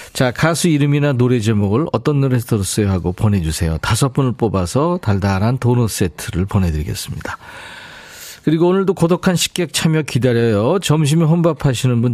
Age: 40-59